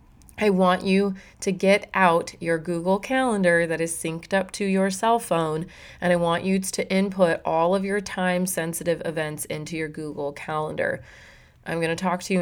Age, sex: 30-49, female